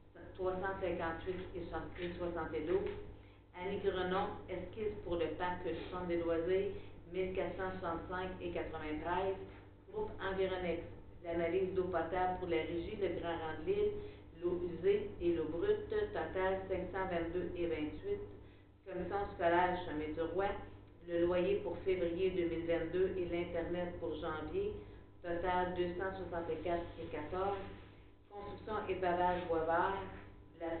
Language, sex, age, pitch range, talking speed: French, female, 50-69, 165-185 Hz, 115 wpm